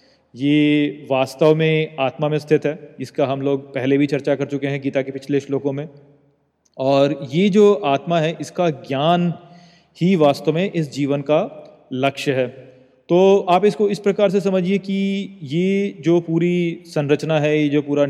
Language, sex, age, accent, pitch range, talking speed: Hindi, male, 30-49, native, 135-170 Hz, 170 wpm